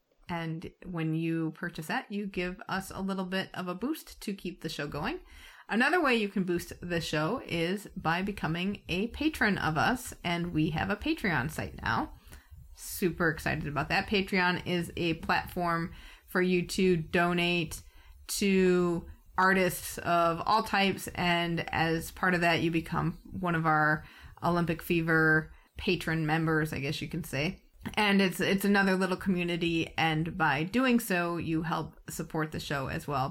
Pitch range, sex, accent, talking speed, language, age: 160-195 Hz, female, American, 170 wpm, English, 30-49